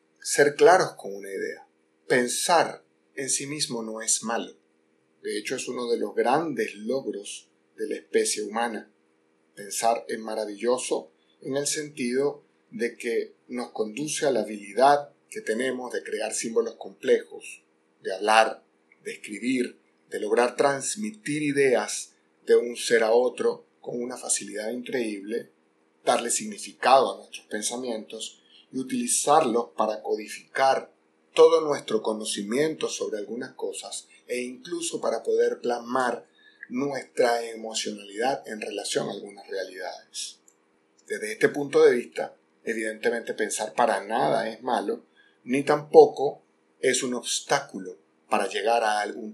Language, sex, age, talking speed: Spanish, male, 30-49, 130 wpm